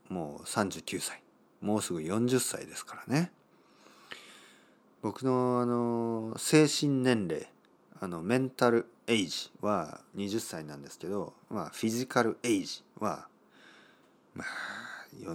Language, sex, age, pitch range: Japanese, male, 40-59, 95-120 Hz